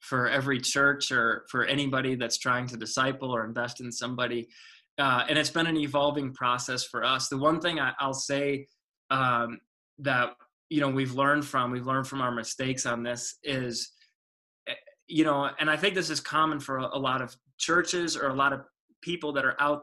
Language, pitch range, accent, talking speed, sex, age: English, 130-155 Hz, American, 200 wpm, male, 20-39